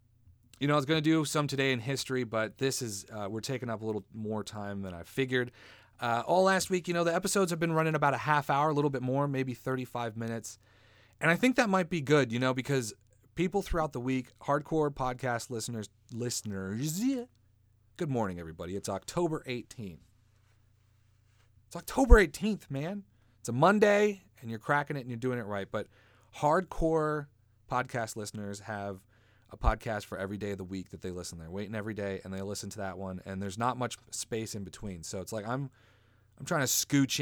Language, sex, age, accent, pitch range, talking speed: English, male, 30-49, American, 105-145 Hz, 205 wpm